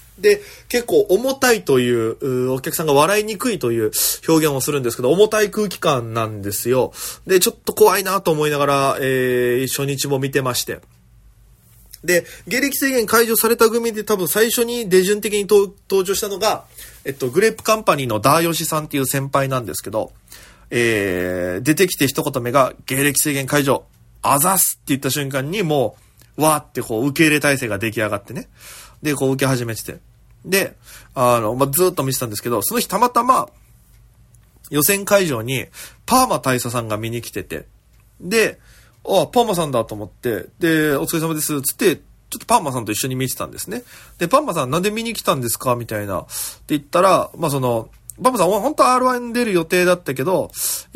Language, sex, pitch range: Japanese, male, 120-190 Hz